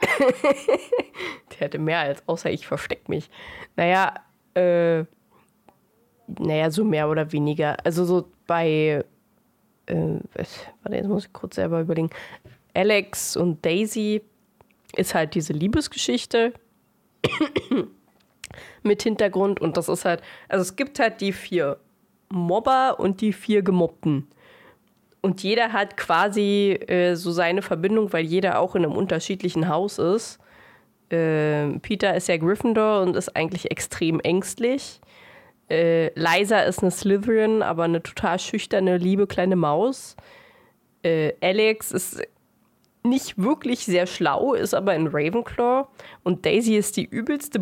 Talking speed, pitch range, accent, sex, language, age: 130 wpm, 170-215 Hz, German, female, German, 20-39